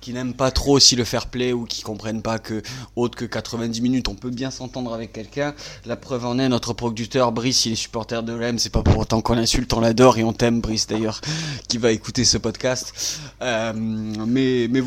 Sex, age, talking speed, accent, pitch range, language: male, 20-39, 225 wpm, French, 115-130 Hz, French